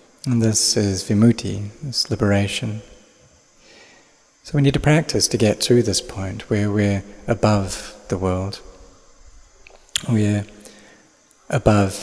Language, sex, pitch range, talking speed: English, male, 100-115 Hz, 115 wpm